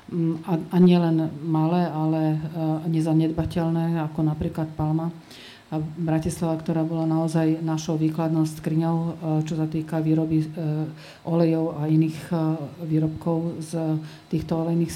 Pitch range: 155-170 Hz